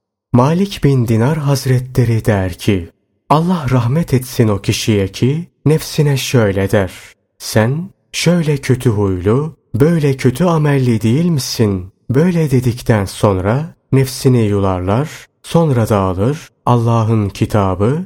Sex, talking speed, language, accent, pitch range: male, 110 wpm, Turkish, native, 100-135 Hz